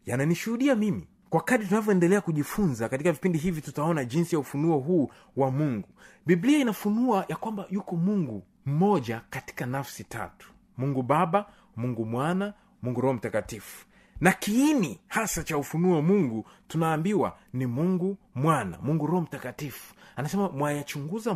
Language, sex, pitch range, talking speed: Swahili, male, 145-210 Hz, 135 wpm